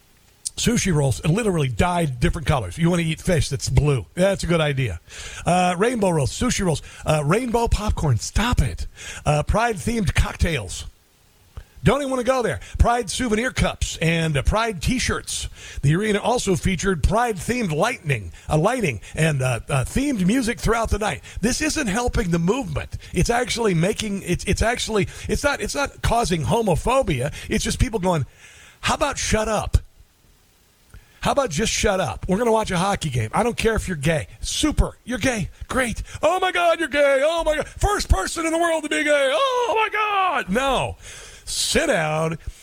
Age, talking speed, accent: 50-69, 180 wpm, American